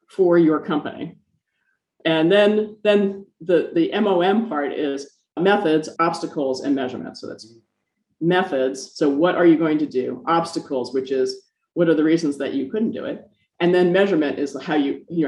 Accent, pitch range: American, 155-210 Hz